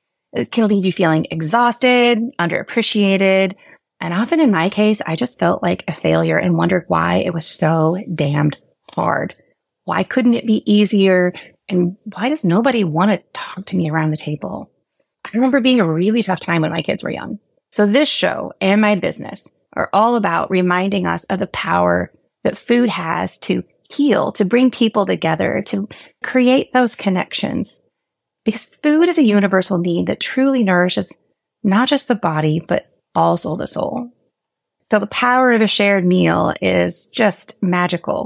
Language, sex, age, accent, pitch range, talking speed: English, female, 30-49, American, 175-230 Hz, 170 wpm